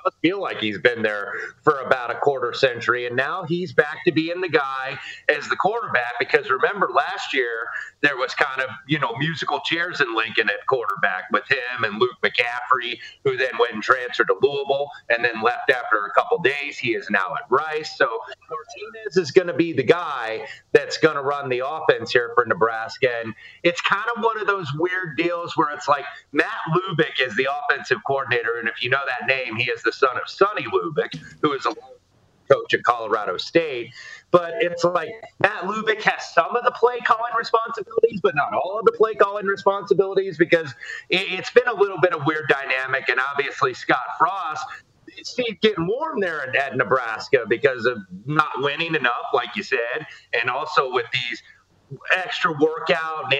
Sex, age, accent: male, 30-49, American